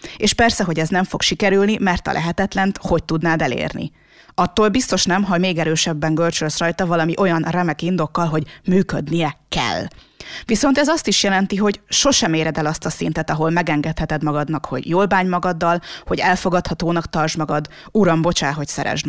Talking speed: 175 wpm